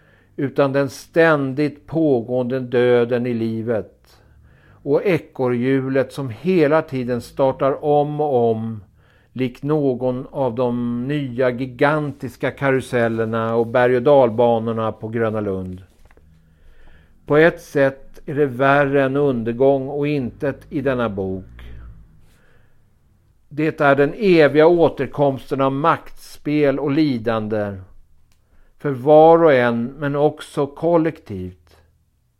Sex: male